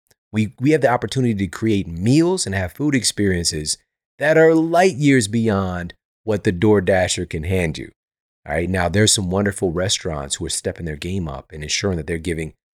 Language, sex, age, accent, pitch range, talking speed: English, male, 30-49, American, 85-115 Hz, 195 wpm